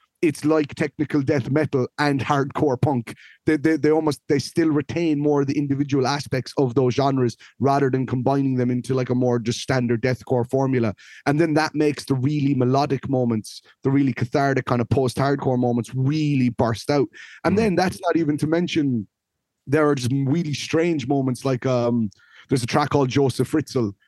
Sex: male